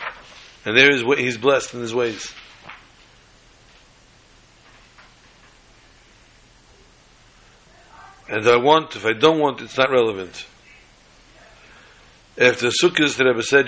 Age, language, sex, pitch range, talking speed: 60-79, English, male, 120-140 Hz, 95 wpm